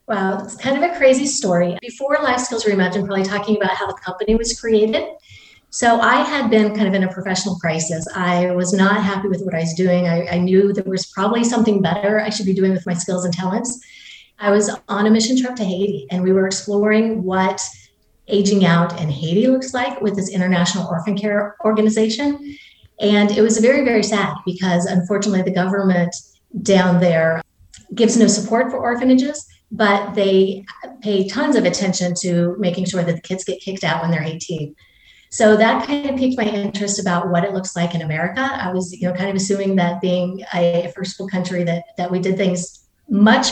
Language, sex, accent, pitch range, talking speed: English, female, American, 180-220 Hz, 205 wpm